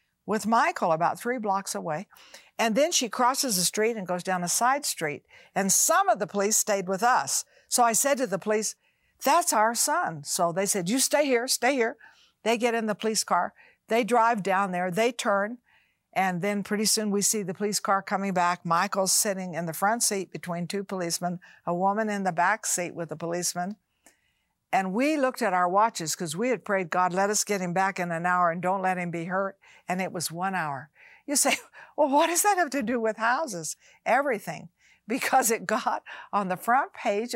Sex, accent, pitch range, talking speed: female, American, 185-240 Hz, 215 wpm